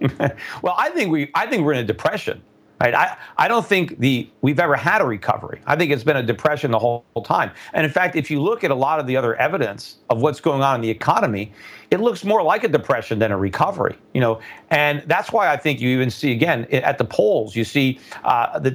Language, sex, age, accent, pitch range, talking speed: English, male, 40-59, American, 120-155 Hz, 240 wpm